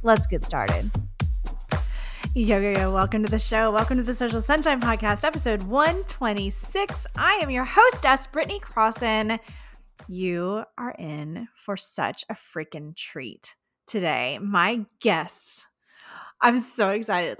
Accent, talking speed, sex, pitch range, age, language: American, 135 wpm, female, 180-240 Hz, 20-39, English